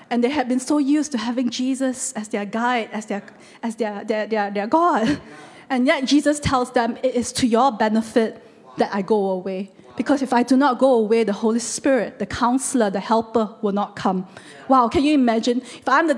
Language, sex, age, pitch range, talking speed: English, female, 20-39, 215-265 Hz, 215 wpm